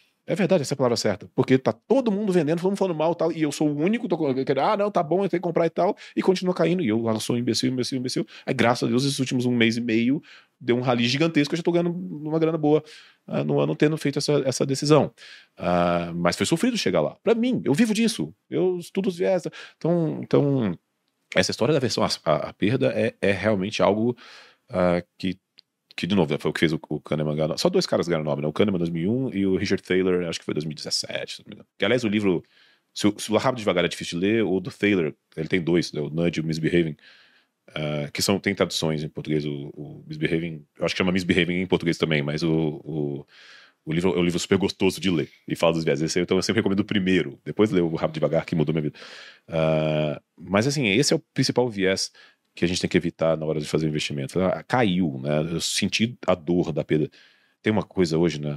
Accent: Brazilian